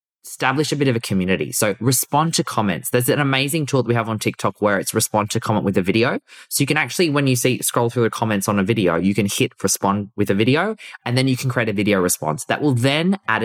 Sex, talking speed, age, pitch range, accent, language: male, 270 wpm, 20-39, 100-130 Hz, Australian, English